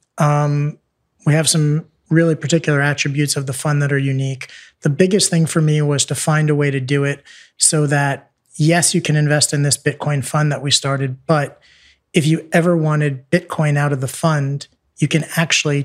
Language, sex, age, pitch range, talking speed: English, male, 30-49, 140-155 Hz, 195 wpm